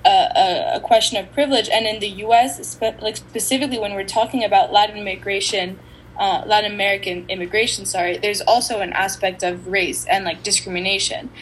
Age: 10-29